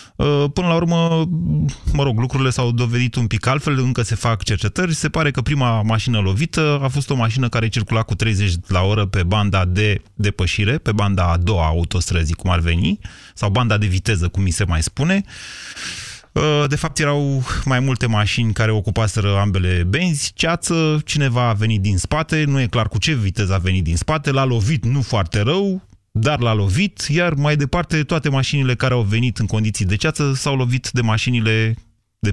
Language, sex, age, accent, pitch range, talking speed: Romanian, male, 30-49, native, 105-140 Hz, 190 wpm